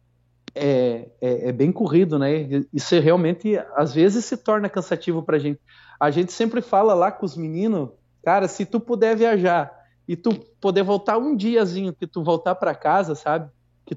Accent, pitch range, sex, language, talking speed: Brazilian, 145-195 Hz, male, Portuguese, 175 wpm